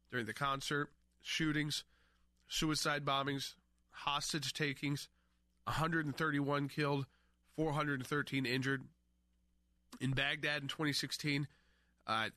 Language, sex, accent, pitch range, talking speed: English, male, American, 125-150 Hz, 80 wpm